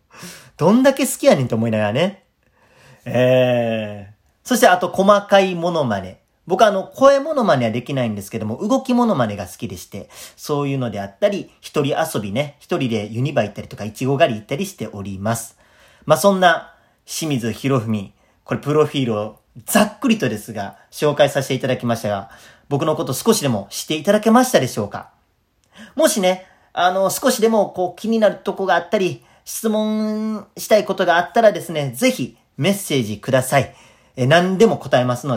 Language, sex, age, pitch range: Japanese, male, 40-59, 115-190 Hz